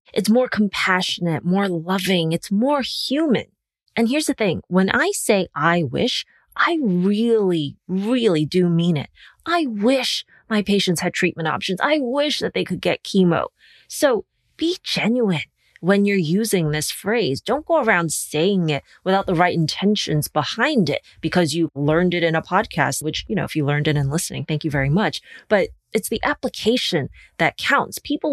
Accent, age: American, 30-49